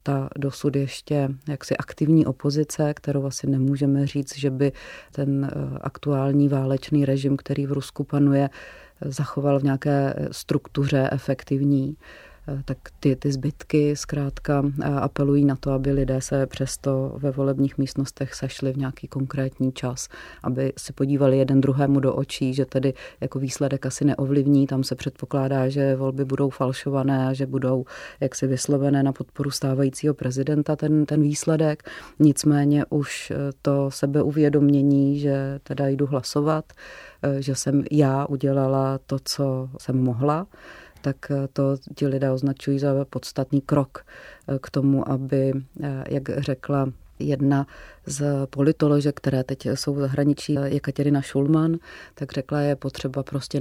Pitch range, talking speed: 135-145 Hz, 140 wpm